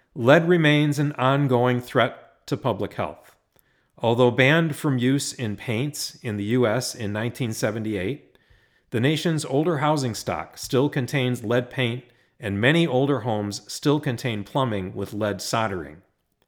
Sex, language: male, English